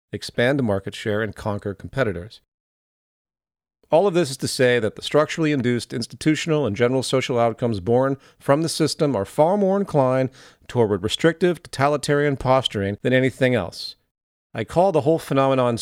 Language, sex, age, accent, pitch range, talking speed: English, male, 40-59, American, 105-150 Hz, 160 wpm